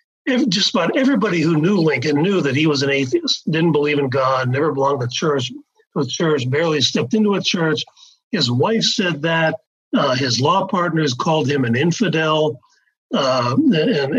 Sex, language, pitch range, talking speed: male, English, 140-190 Hz, 180 wpm